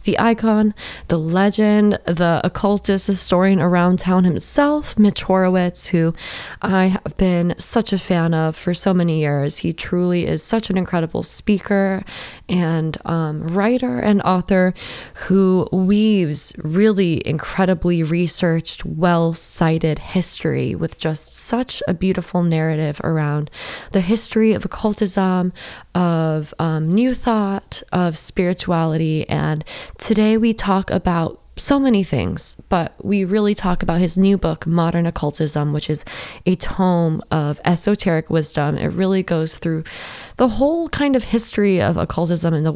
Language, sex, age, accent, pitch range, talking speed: English, female, 20-39, American, 160-200 Hz, 140 wpm